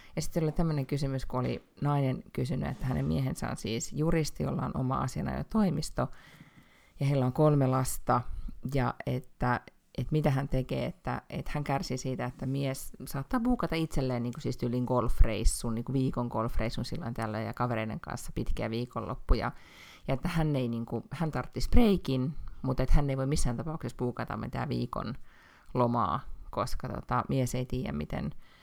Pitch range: 125-155 Hz